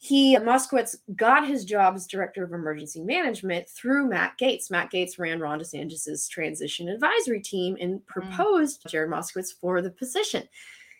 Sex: female